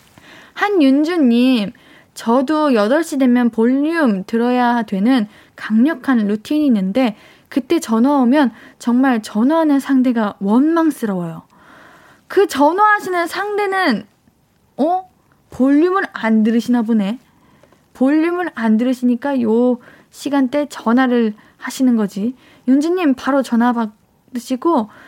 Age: 20-39